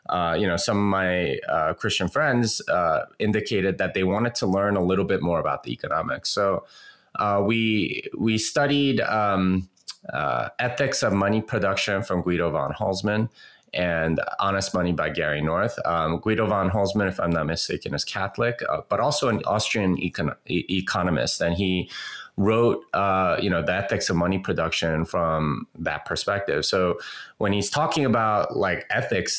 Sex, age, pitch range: male, 30-49, 85-105 Hz